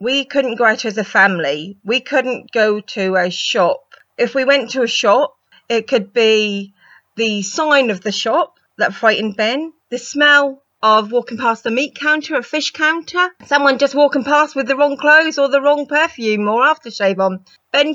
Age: 30-49